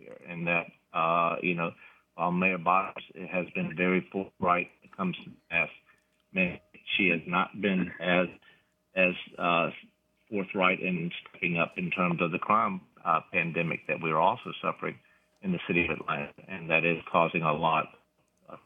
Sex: male